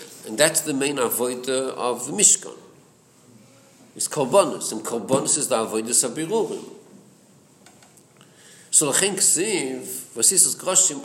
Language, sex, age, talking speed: English, male, 50-69, 130 wpm